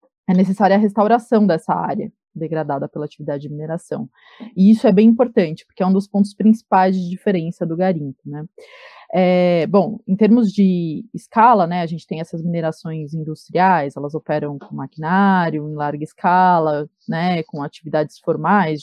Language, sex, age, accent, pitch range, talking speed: Portuguese, female, 20-39, Brazilian, 160-220 Hz, 165 wpm